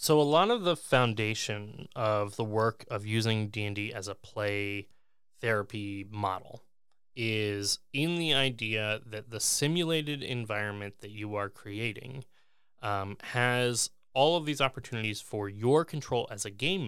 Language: English